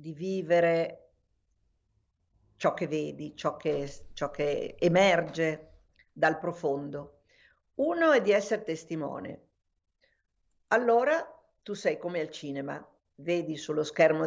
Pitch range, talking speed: 150-200 Hz, 110 wpm